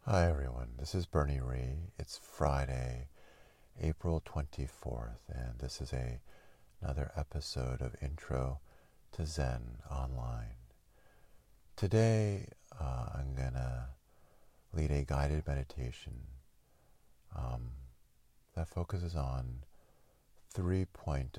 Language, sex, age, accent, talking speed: English, male, 40-59, American, 95 wpm